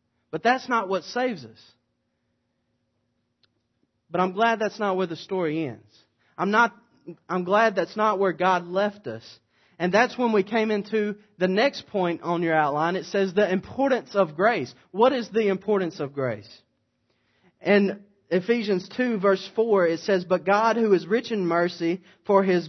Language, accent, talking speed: English, American, 170 wpm